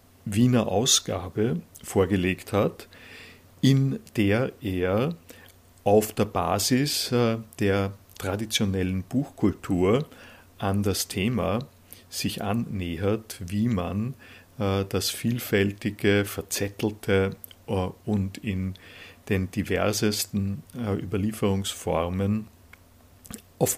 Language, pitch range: German, 95-110 Hz